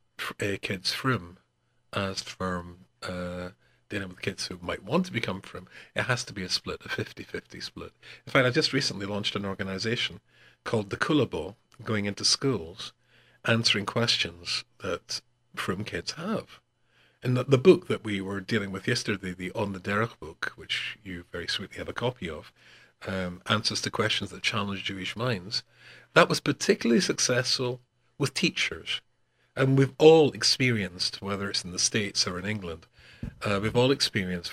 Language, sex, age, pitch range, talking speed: English, male, 50-69, 100-130 Hz, 170 wpm